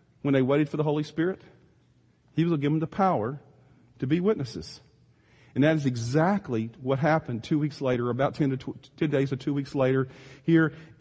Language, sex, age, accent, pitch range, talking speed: English, male, 40-59, American, 150-200 Hz, 200 wpm